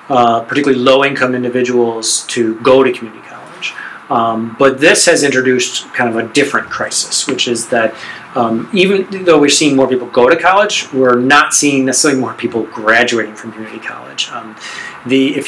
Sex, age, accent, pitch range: male, 40-59, American, 120-140 Hz